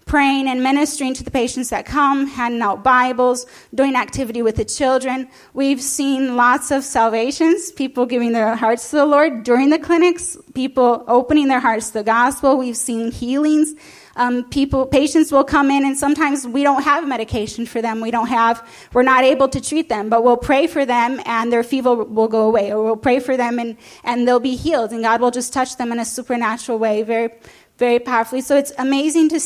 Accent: American